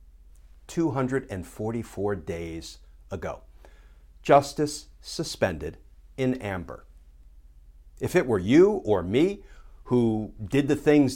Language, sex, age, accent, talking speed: English, male, 50-69, American, 90 wpm